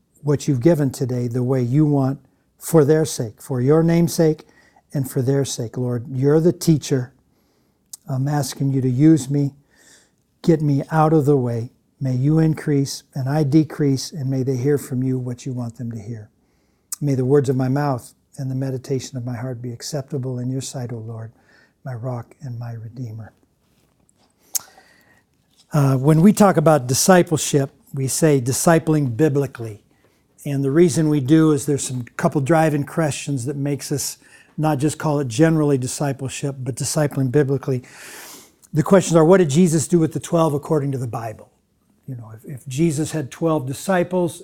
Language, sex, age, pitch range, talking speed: English, male, 50-69, 135-160 Hz, 180 wpm